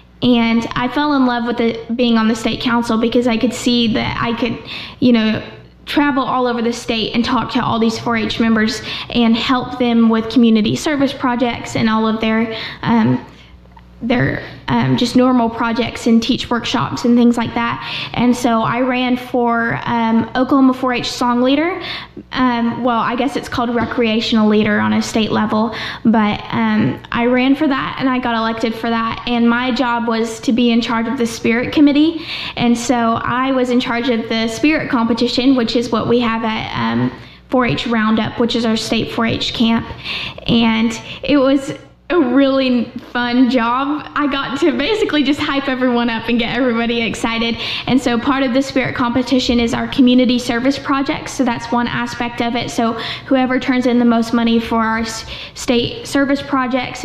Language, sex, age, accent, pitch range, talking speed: English, female, 10-29, American, 230-255 Hz, 185 wpm